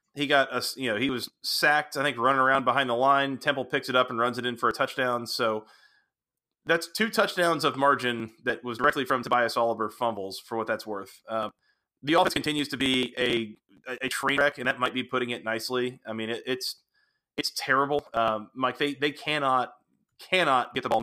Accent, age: American, 30-49